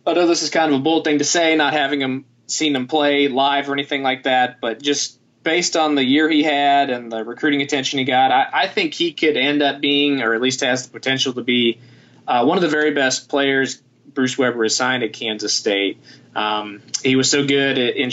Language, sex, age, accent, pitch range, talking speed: English, male, 20-39, American, 125-145 Hz, 235 wpm